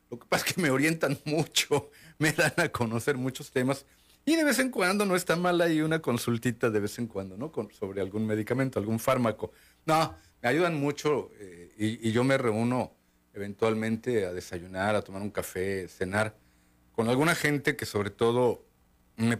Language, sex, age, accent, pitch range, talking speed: Spanish, male, 50-69, Mexican, 95-135 Hz, 185 wpm